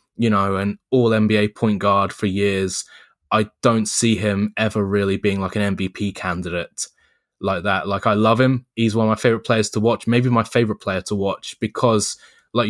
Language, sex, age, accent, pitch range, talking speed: English, male, 10-29, British, 100-115 Hz, 200 wpm